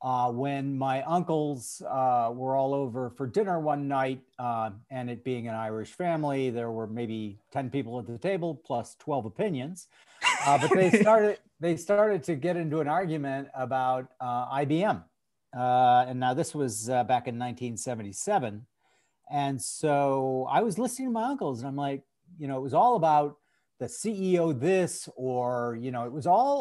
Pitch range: 125-165 Hz